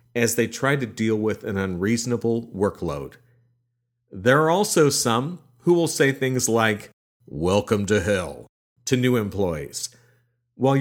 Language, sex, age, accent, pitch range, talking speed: English, male, 40-59, American, 105-135 Hz, 140 wpm